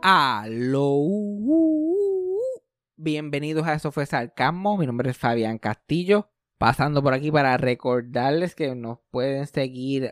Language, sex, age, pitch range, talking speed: Spanish, male, 20-39, 125-160 Hz, 120 wpm